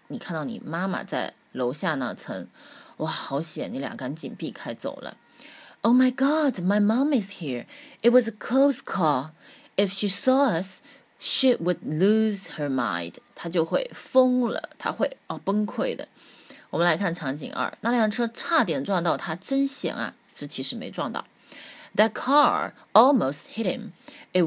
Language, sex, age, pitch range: Chinese, female, 20-39, 165-250 Hz